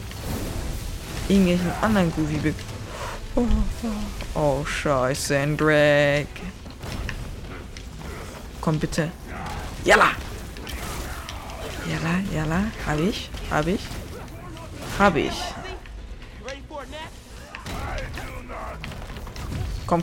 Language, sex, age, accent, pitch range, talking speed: German, female, 20-39, German, 100-165 Hz, 70 wpm